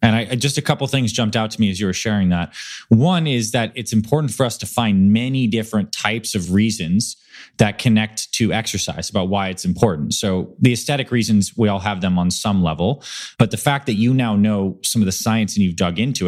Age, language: 20-39, English